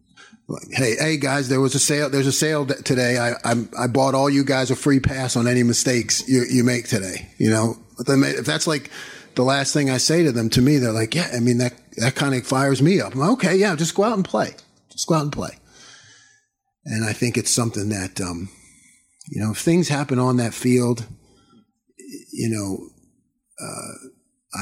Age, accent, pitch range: 40-59, American, 105-135 Hz